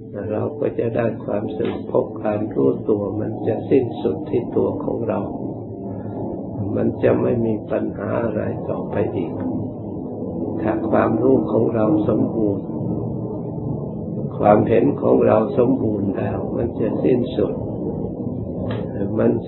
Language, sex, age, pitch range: Thai, male, 60-79, 100-115 Hz